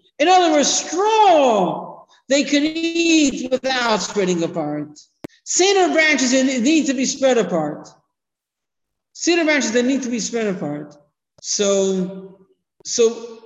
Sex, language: male, English